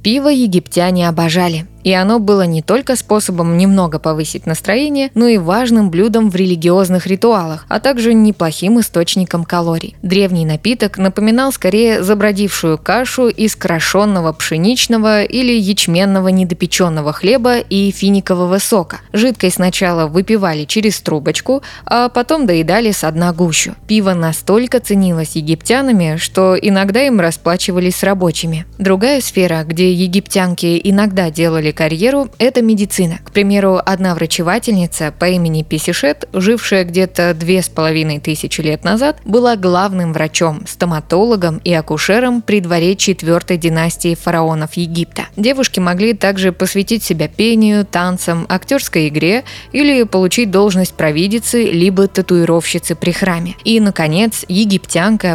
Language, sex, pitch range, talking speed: Russian, female, 170-215 Hz, 125 wpm